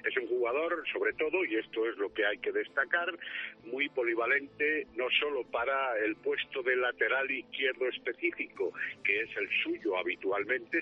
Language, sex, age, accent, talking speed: Spanish, male, 60-79, Spanish, 160 wpm